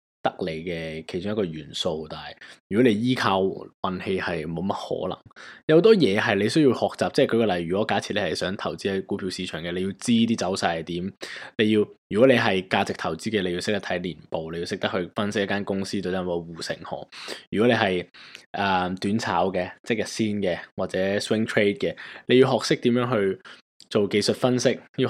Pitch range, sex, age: 95-125 Hz, male, 20-39